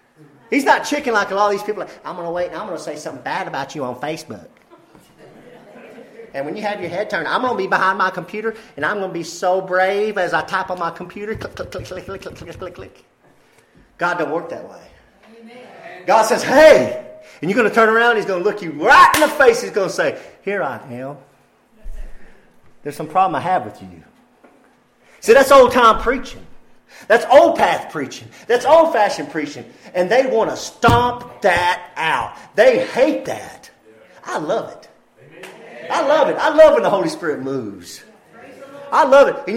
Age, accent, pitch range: 40-59, American, 180-275 Hz